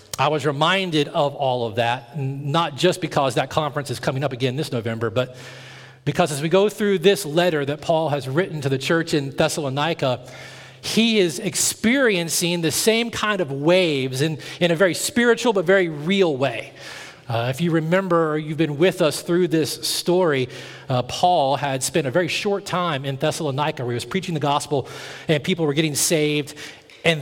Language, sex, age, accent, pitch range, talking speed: English, male, 40-59, American, 145-200 Hz, 185 wpm